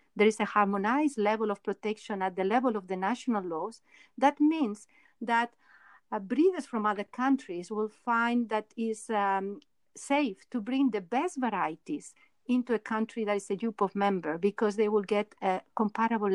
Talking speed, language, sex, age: 175 wpm, English, female, 50-69